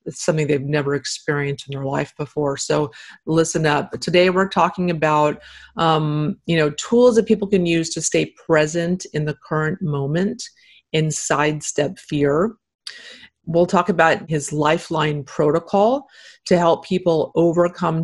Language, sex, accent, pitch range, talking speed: English, female, American, 155-205 Hz, 150 wpm